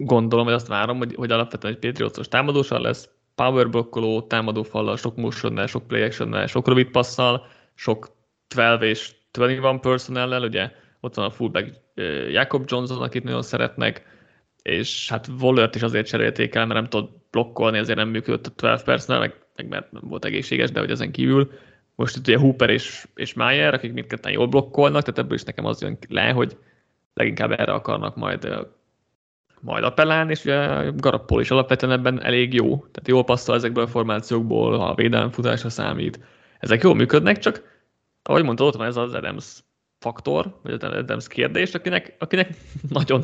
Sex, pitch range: male, 115-135 Hz